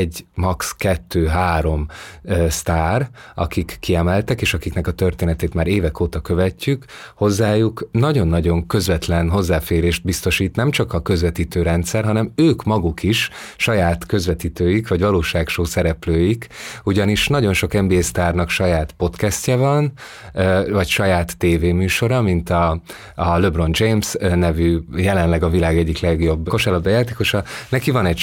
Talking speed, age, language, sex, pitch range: 130 wpm, 30-49, Hungarian, male, 85-105 Hz